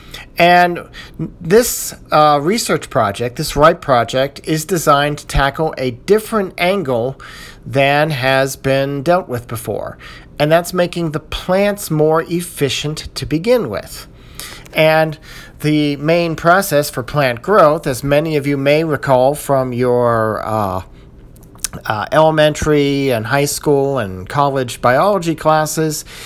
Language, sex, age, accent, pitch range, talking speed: English, male, 40-59, American, 125-160 Hz, 130 wpm